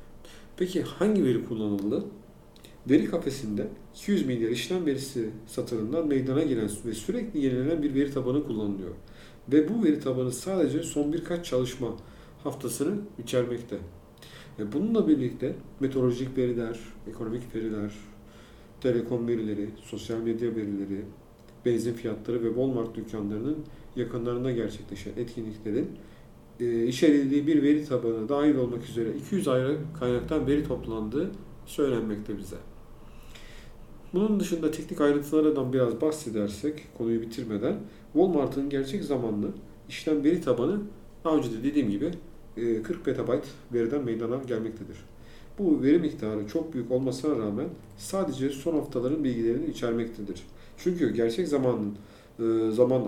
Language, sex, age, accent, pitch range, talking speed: Turkish, male, 50-69, native, 110-145 Hz, 115 wpm